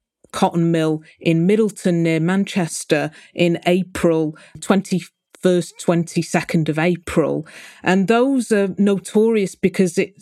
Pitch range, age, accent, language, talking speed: 165-190 Hz, 40-59, British, English, 105 wpm